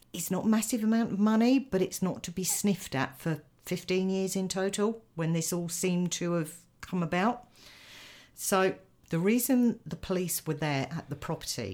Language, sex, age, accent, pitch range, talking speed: English, female, 50-69, British, 135-180 Hz, 190 wpm